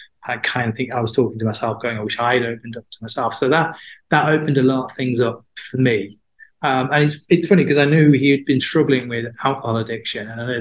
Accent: British